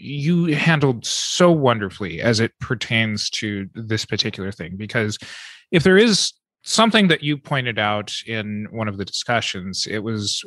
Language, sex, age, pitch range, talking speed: English, male, 30-49, 110-150 Hz, 155 wpm